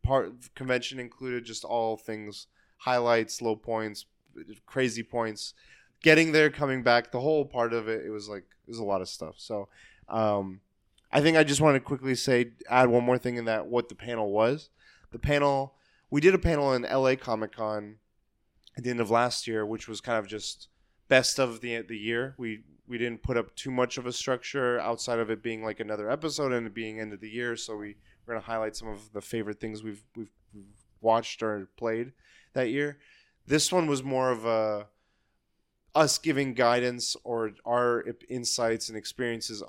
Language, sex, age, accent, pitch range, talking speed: English, male, 20-39, American, 110-125 Hz, 195 wpm